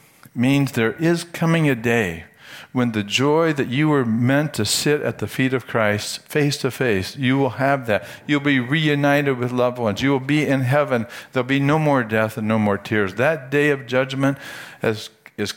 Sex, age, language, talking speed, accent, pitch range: male, 60-79, English, 205 wpm, American, 105-140 Hz